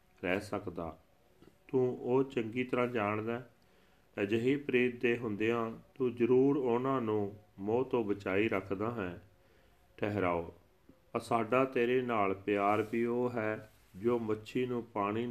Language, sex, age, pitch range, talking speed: Punjabi, male, 40-59, 100-120 Hz, 125 wpm